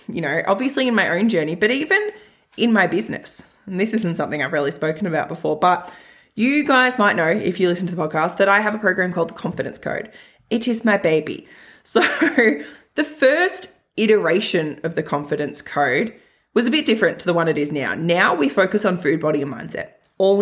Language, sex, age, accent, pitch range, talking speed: English, female, 20-39, Australian, 160-215 Hz, 210 wpm